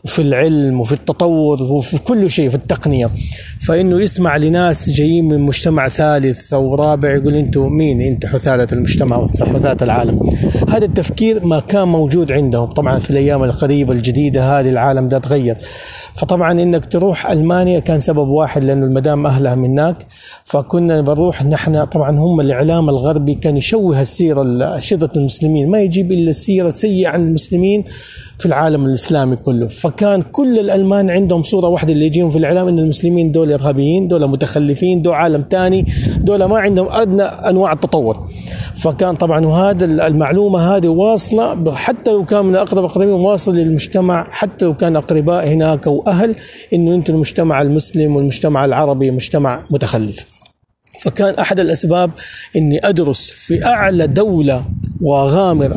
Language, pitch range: Arabic, 140-180 Hz